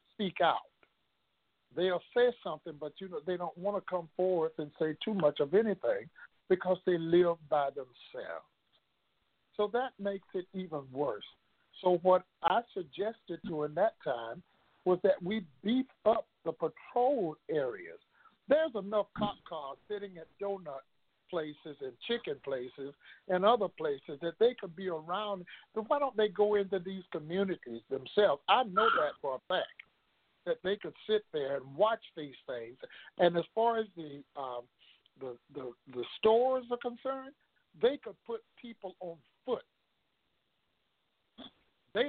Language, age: English, 60-79